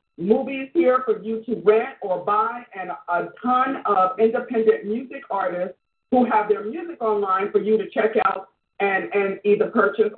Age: 50-69